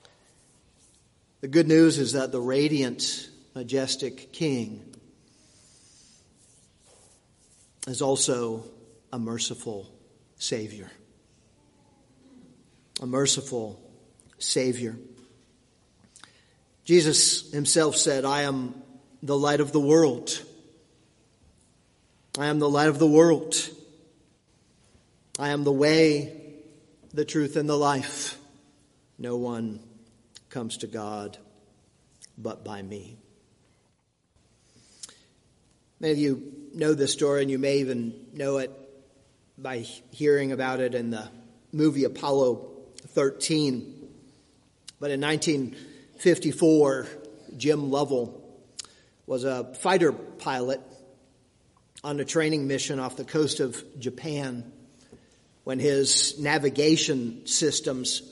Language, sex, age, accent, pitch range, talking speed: English, male, 40-59, American, 125-150 Hz, 95 wpm